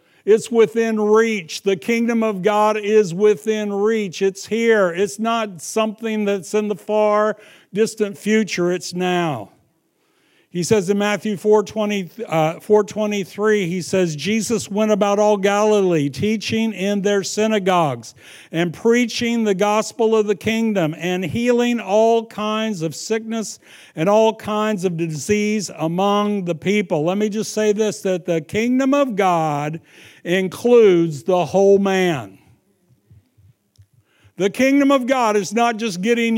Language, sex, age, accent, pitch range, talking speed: English, male, 60-79, American, 180-225 Hz, 135 wpm